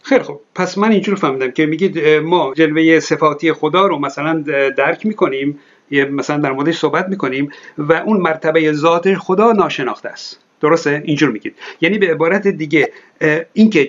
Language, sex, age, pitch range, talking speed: Persian, male, 50-69, 155-195 Hz, 155 wpm